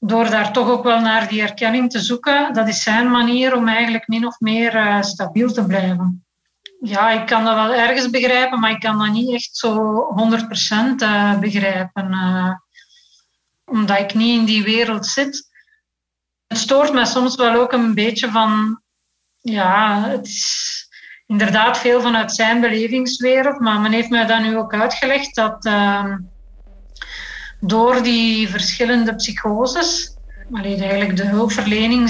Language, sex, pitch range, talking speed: Dutch, female, 215-245 Hz, 145 wpm